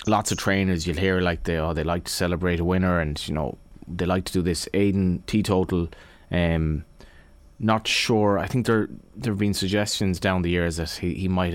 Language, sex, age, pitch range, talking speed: English, male, 20-39, 85-100 Hz, 215 wpm